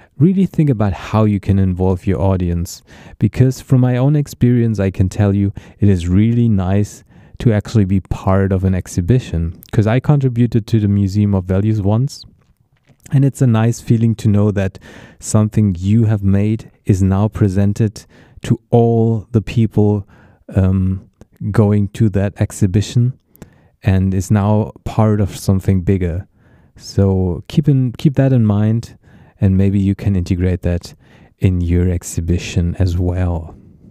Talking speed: 150 wpm